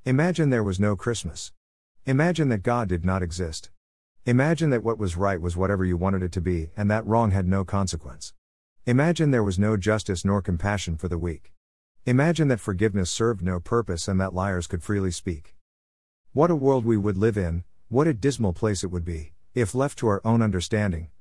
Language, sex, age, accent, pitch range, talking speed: English, male, 50-69, American, 85-115 Hz, 200 wpm